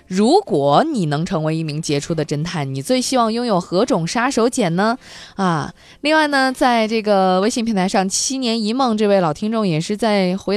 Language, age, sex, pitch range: Chinese, 20-39, female, 170-230 Hz